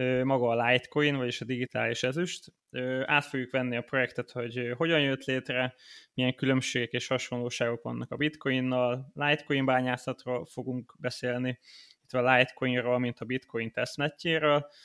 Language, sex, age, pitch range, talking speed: Hungarian, male, 20-39, 125-140 Hz, 135 wpm